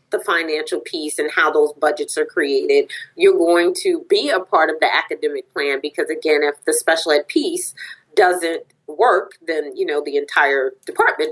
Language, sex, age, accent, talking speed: English, female, 30-49, American, 180 wpm